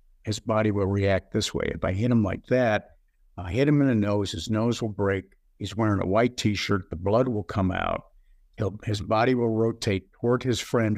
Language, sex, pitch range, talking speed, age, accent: English, male, 90-115 Hz, 220 wpm, 50-69, American